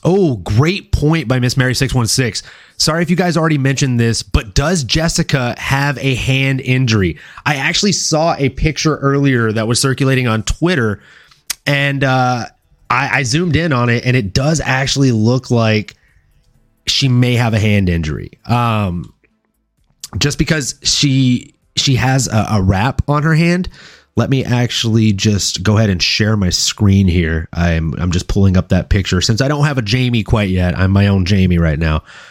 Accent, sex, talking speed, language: American, male, 180 wpm, English